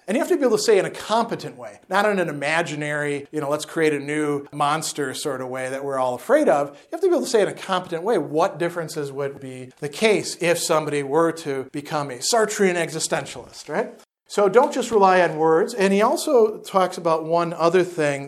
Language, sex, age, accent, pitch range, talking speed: English, male, 40-59, American, 145-205 Hz, 235 wpm